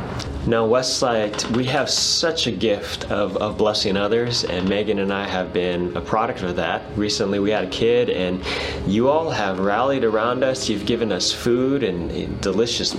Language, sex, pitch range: English, male, 90-125 Hz